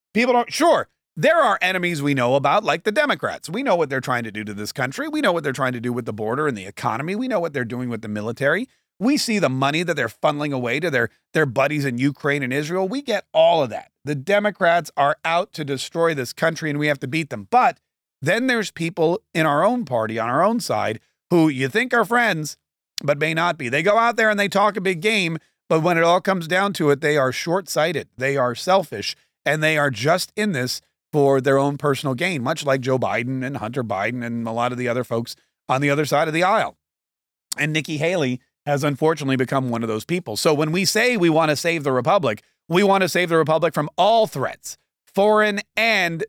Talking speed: 240 wpm